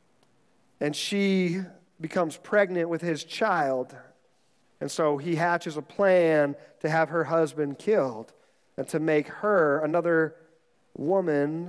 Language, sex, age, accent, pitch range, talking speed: English, male, 40-59, American, 175-235 Hz, 125 wpm